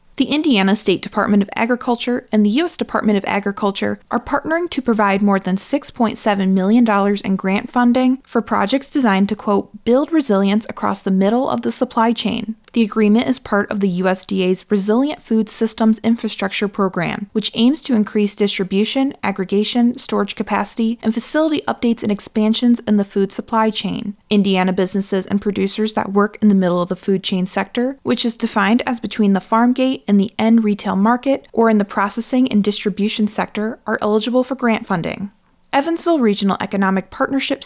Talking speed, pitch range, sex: 175 wpm, 200-240 Hz, female